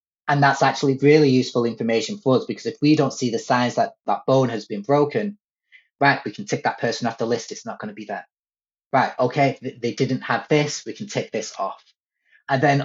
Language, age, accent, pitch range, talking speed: English, 30-49, British, 120-145 Hz, 230 wpm